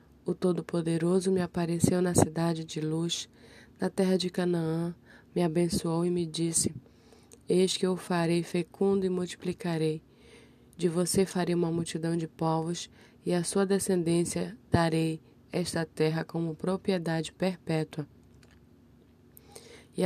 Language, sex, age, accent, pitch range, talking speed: Portuguese, female, 20-39, Brazilian, 155-180 Hz, 130 wpm